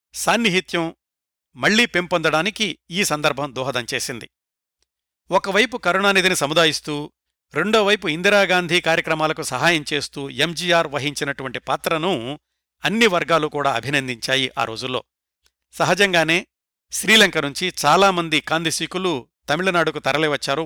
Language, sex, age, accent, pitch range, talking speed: Telugu, male, 60-79, native, 140-180 Hz, 85 wpm